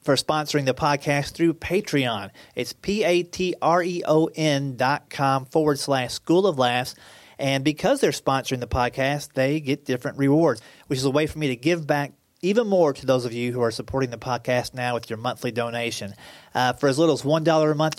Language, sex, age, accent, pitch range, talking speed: English, male, 30-49, American, 125-150 Hz, 190 wpm